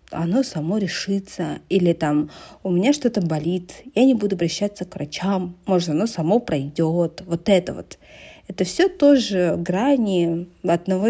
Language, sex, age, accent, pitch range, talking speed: Russian, female, 40-59, native, 170-215 Hz, 145 wpm